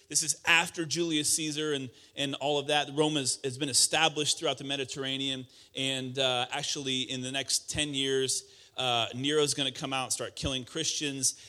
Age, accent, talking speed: 30-49, American, 190 wpm